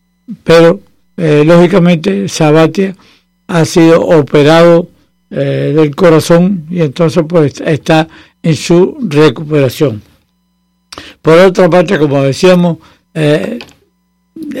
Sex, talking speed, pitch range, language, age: male, 95 wpm, 130-180 Hz, English, 60-79